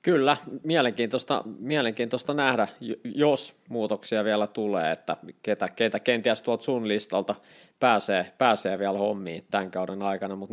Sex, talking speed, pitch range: male, 130 wpm, 100-115 Hz